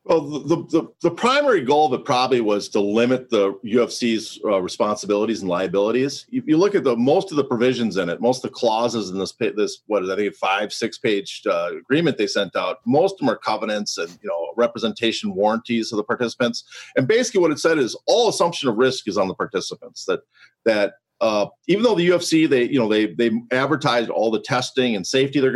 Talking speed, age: 220 wpm, 50-69